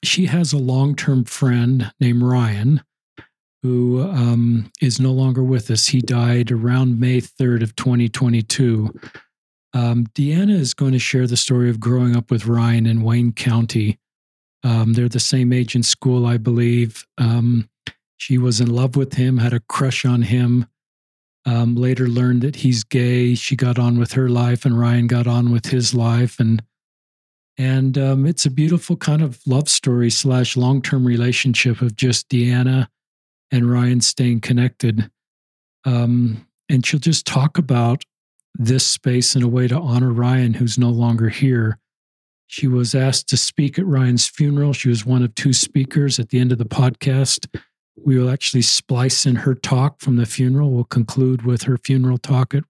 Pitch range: 120-130 Hz